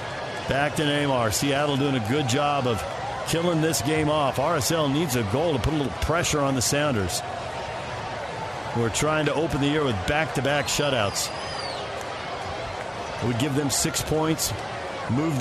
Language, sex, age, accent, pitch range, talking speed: English, male, 50-69, American, 130-165 Hz, 155 wpm